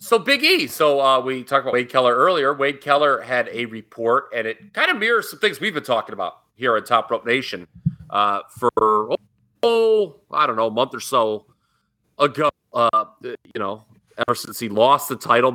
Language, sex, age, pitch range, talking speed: English, male, 30-49, 100-145 Hz, 200 wpm